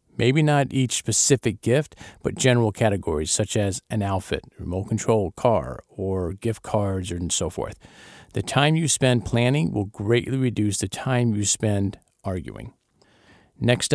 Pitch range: 105-130 Hz